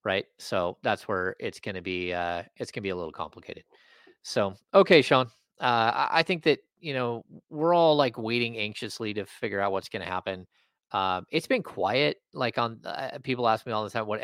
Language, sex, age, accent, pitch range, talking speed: English, male, 30-49, American, 95-115 Hz, 205 wpm